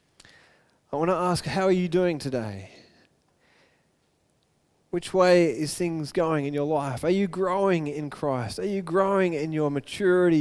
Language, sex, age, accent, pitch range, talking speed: English, male, 20-39, Australian, 145-180 Hz, 160 wpm